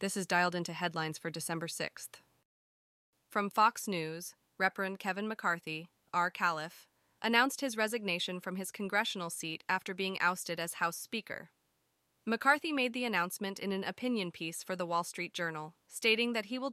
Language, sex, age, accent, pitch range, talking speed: English, female, 20-39, American, 170-215 Hz, 165 wpm